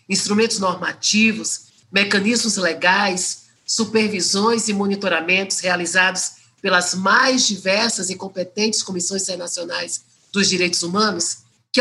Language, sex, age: Portuguese, male, 50-69